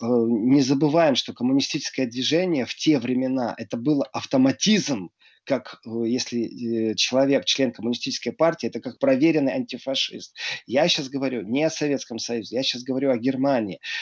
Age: 30-49